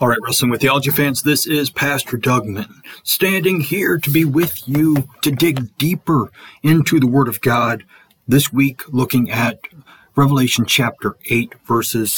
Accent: American